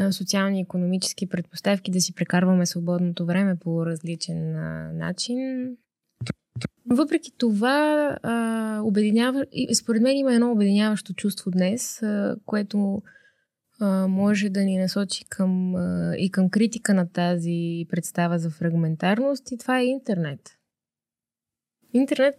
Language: Bulgarian